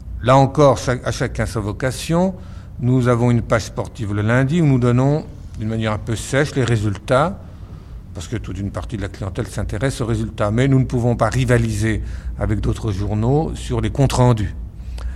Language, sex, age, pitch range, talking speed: French, male, 60-79, 100-130 Hz, 185 wpm